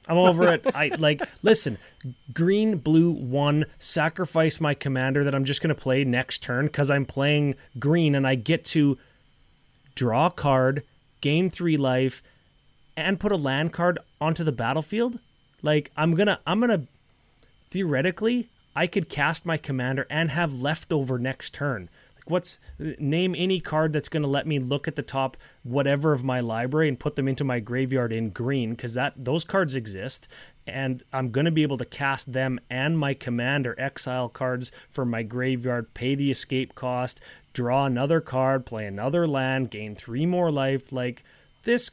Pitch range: 130-165 Hz